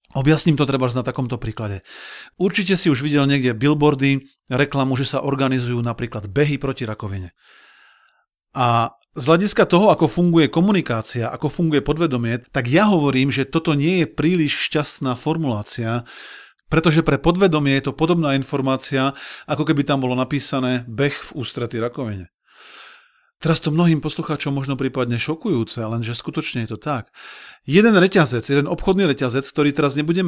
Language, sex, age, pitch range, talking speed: Slovak, male, 40-59, 130-165 Hz, 150 wpm